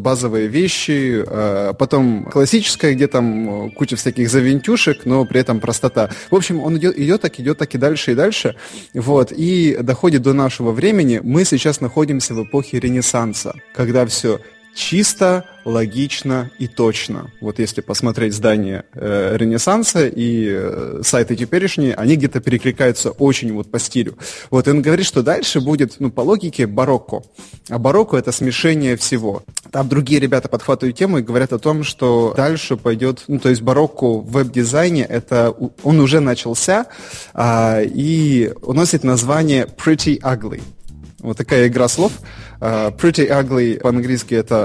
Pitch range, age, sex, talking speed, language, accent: 115-145 Hz, 20-39, male, 150 wpm, Russian, native